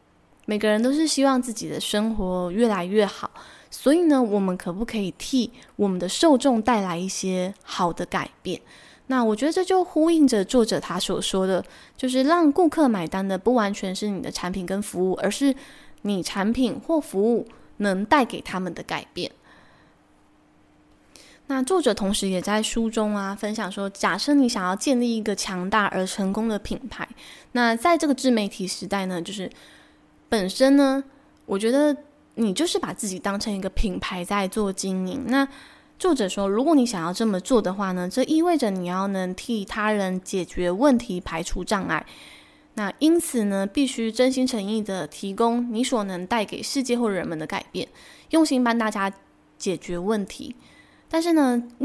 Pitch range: 195-265 Hz